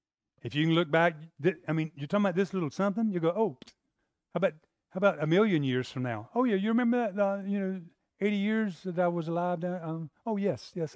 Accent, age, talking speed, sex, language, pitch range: American, 50-69, 245 wpm, male, English, 150-200 Hz